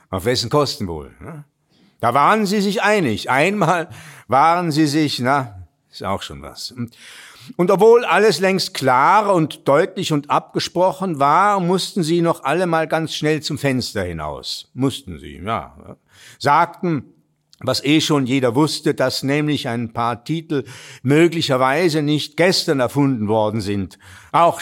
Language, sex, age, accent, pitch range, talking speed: German, male, 60-79, German, 115-165 Hz, 145 wpm